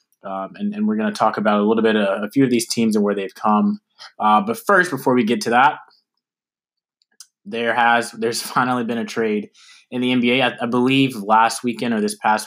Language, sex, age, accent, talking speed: English, male, 20-39, American, 225 wpm